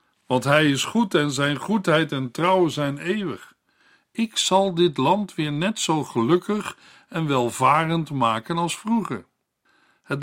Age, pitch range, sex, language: 60-79, 135-180 Hz, male, Dutch